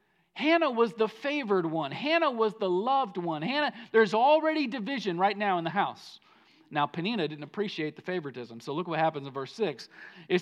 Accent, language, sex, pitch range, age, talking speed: American, English, male, 160-220 Hz, 40-59, 190 wpm